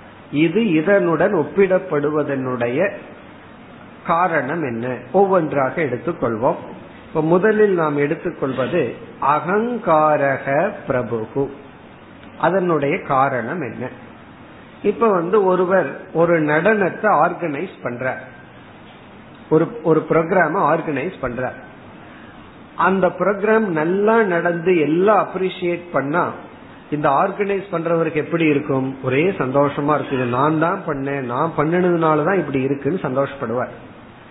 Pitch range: 140-190 Hz